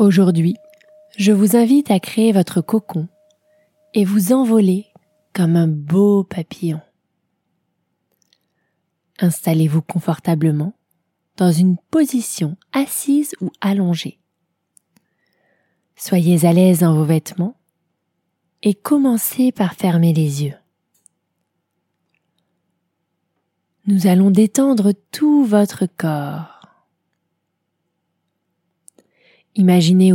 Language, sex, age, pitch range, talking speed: French, female, 20-39, 175-220 Hz, 85 wpm